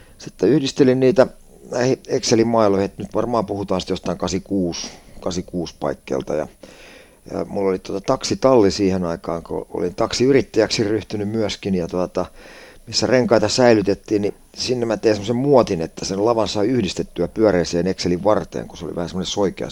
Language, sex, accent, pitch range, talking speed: Finnish, male, native, 95-115 Hz, 155 wpm